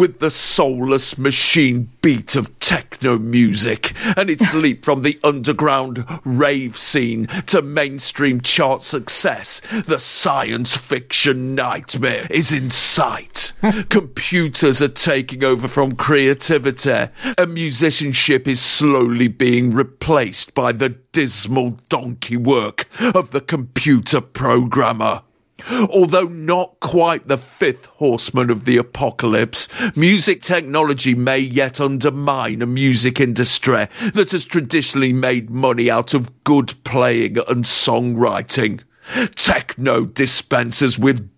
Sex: male